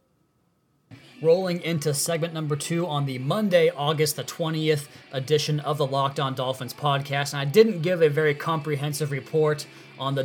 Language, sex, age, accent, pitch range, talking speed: English, male, 20-39, American, 135-155 Hz, 165 wpm